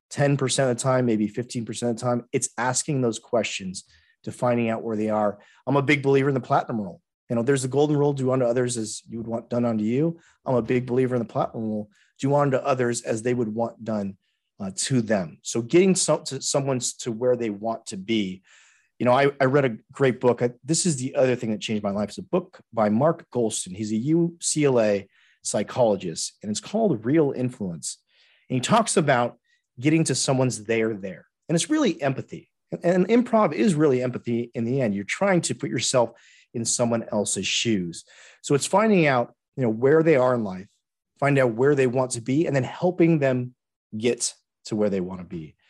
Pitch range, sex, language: 115-145 Hz, male, English